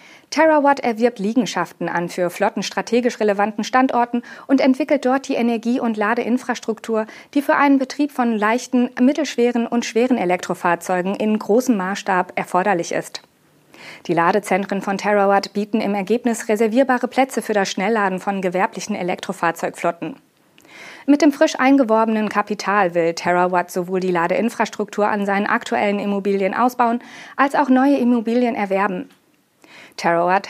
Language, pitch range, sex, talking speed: German, 190-245 Hz, female, 130 wpm